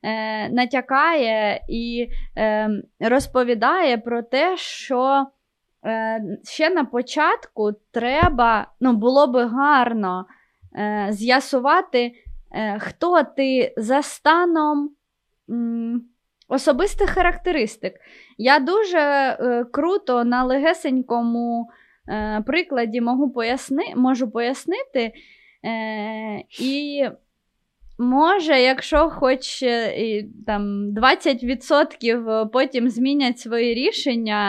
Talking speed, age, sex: 85 wpm, 20-39, female